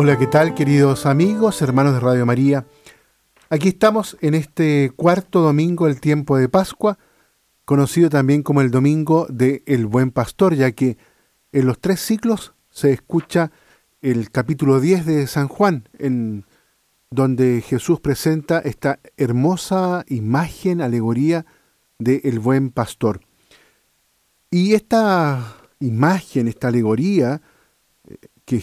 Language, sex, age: Spanish, male, 50-69